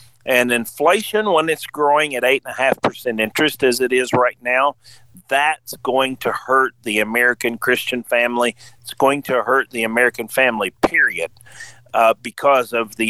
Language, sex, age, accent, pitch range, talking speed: English, male, 50-69, American, 120-145 Hz, 150 wpm